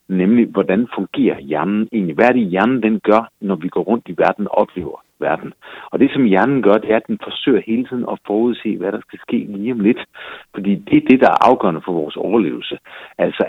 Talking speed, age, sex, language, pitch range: 225 wpm, 60-79, male, Danish, 105-155 Hz